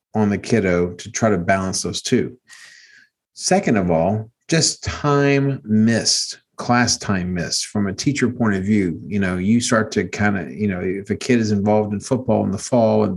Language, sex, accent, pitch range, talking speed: English, male, American, 100-125 Hz, 200 wpm